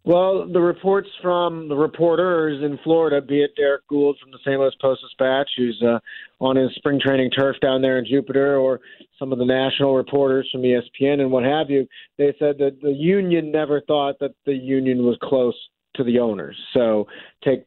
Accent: American